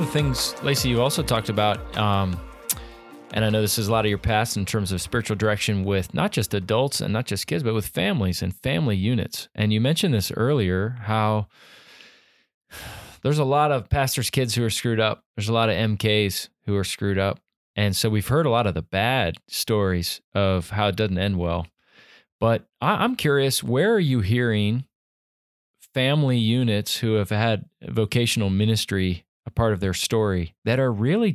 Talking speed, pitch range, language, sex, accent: 190 wpm, 100-130 Hz, English, male, American